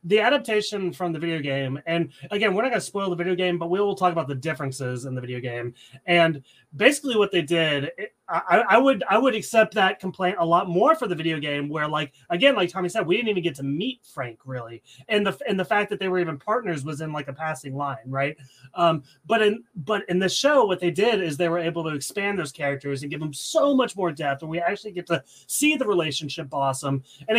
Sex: male